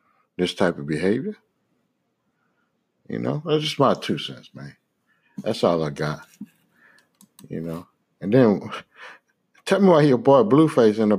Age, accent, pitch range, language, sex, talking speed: 60-79, American, 95-145 Hz, English, male, 150 wpm